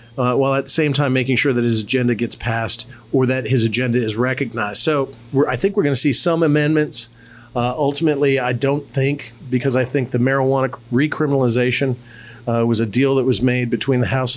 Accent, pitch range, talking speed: American, 120-140 Hz, 205 wpm